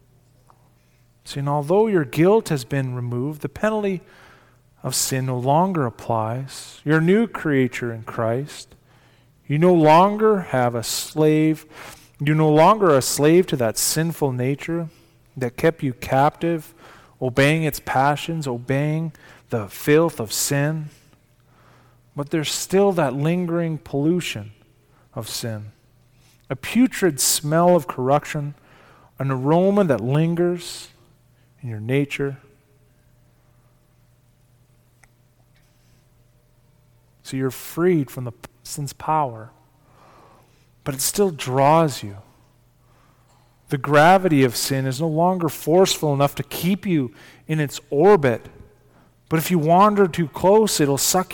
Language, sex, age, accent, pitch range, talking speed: English, male, 40-59, American, 125-165 Hz, 120 wpm